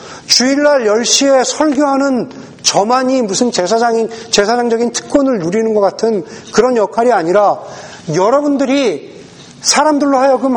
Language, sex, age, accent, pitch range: Korean, male, 40-59, native, 215-265 Hz